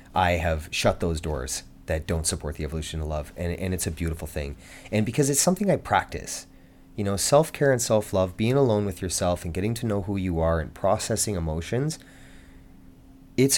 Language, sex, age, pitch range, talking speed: English, male, 30-49, 90-140 Hz, 195 wpm